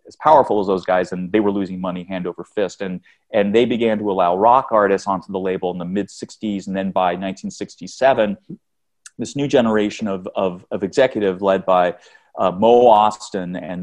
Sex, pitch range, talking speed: male, 95-110 Hz, 195 wpm